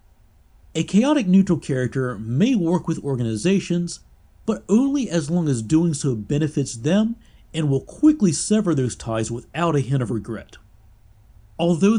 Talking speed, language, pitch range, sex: 145 wpm, English, 120-180 Hz, male